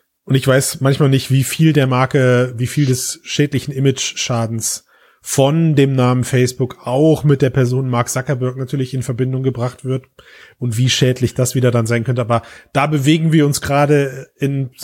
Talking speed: 180 wpm